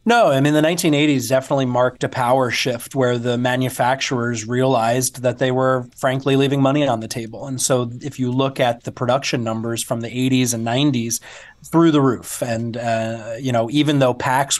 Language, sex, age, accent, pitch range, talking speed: English, male, 30-49, American, 120-140 Hz, 195 wpm